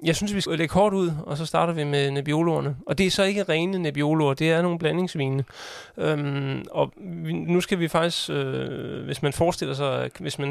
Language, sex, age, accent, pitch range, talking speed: Danish, male, 30-49, native, 140-165 Hz, 215 wpm